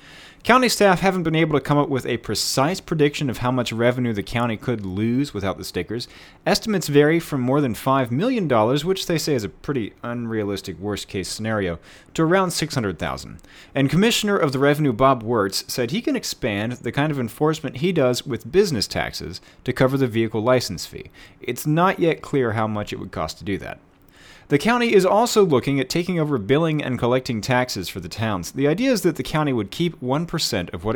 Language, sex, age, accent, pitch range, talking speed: English, male, 30-49, American, 100-150 Hz, 205 wpm